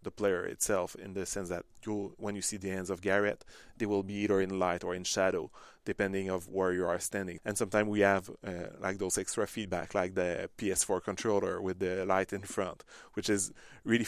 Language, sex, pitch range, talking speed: English, male, 95-105 Hz, 215 wpm